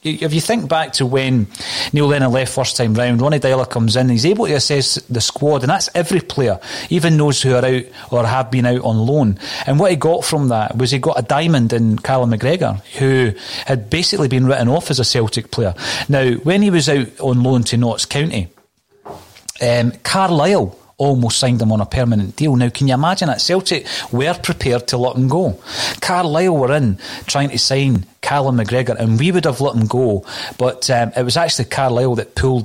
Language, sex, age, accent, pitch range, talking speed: English, male, 30-49, British, 120-145 Hz, 210 wpm